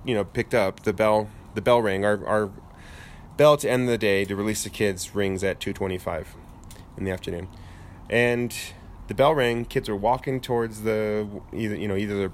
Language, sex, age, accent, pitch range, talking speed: English, male, 30-49, American, 90-110 Hz, 190 wpm